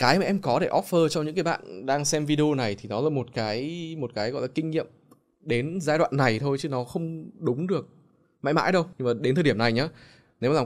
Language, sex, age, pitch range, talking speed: Vietnamese, male, 20-39, 120-155 Hz, 270 wpm